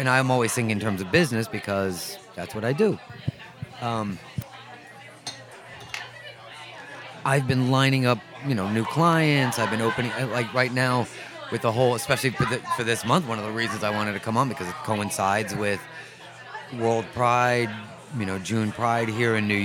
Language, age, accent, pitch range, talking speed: English, 30-49, American, 115-140 Hz, 175 wpm